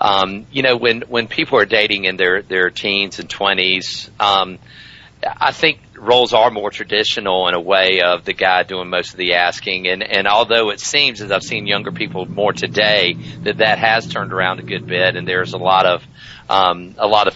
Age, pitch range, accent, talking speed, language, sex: 40-59, 95-115 Hz, American, 210 wpm, English, male